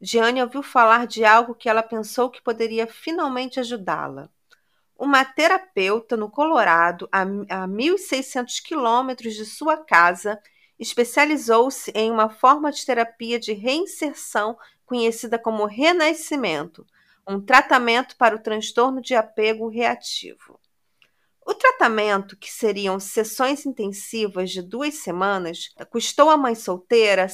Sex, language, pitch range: female, Portuguese, 215-265 Hz